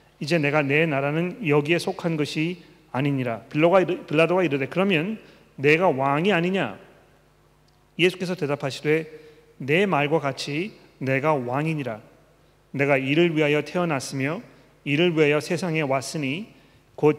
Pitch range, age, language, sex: 140-170 Hz, 40-59, Korean, male